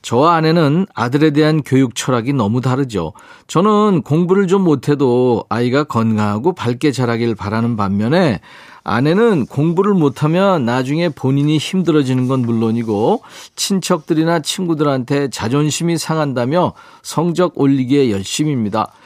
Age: 40-59